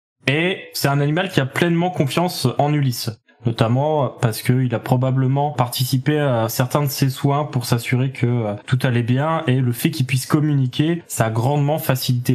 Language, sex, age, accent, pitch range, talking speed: French, male, 20-39, French, 120-155 Hz, 180 wpm